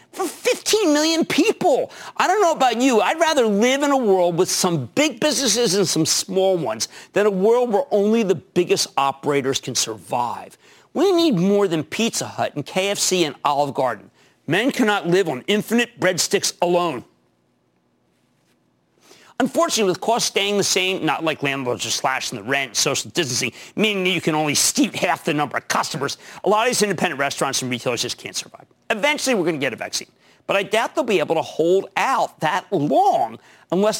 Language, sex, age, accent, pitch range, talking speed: English, male, 50-69, American, 160-240 Hz, 190 wpm